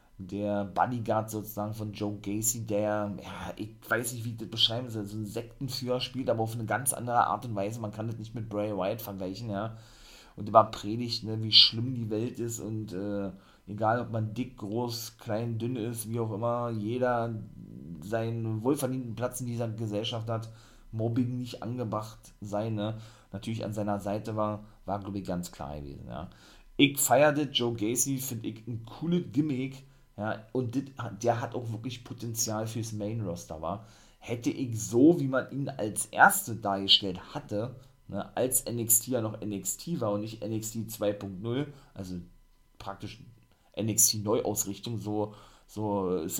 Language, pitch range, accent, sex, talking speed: German, 105-120 Hz, German, male, 170 wpm